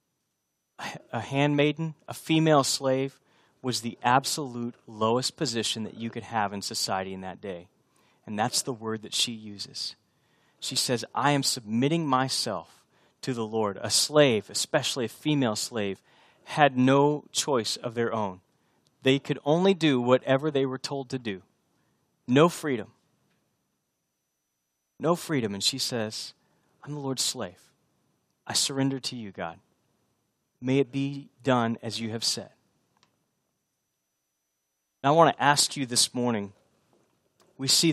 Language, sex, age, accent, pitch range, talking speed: English, male, 30-49, American, 115-155 Hz, 140 wpm